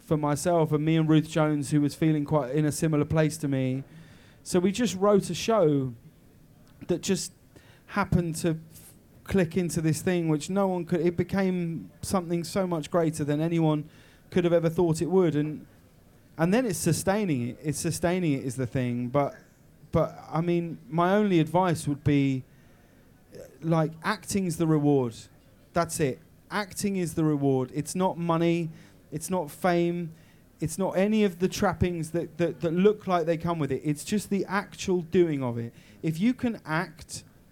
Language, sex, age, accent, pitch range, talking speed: English, male, 30-49, British, 145-175 Hz, 180 wpm